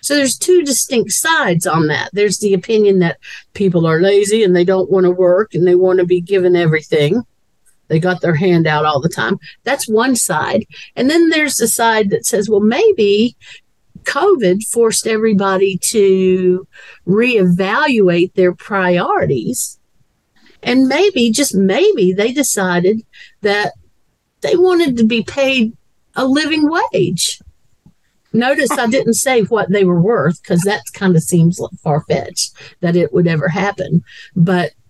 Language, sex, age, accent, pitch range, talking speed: English, female, 50-69, American, 180-230 Hz, 155 wpm